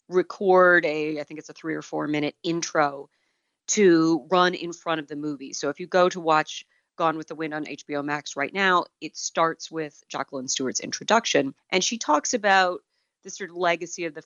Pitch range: 150-180 Hz